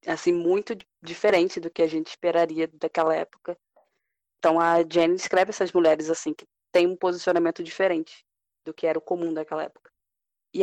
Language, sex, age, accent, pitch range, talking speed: Portuguese, female, 20-39, Brazilian, 165-205 Hz, 170 wpm